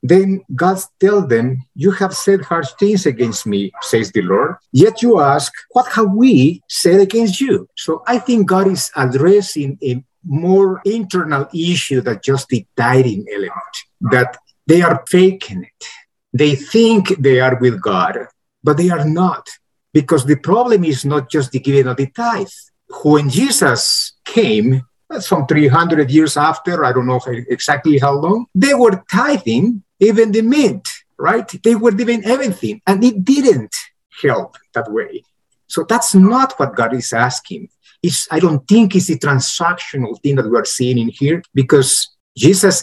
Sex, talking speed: male, 160 wpm